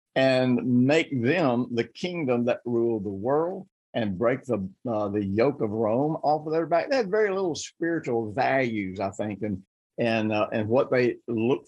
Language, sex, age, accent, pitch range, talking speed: English, male, 50-69, American, 110-150 Hz, 185 wpm